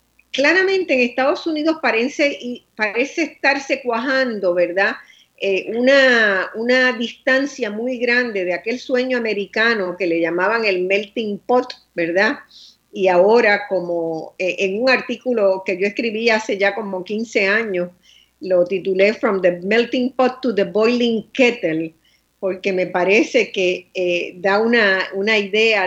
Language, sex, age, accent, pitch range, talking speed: Spanish, female, 50-69, American, 190-240 Hz, 140 wpm